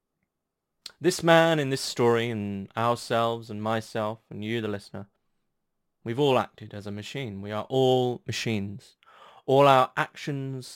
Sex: male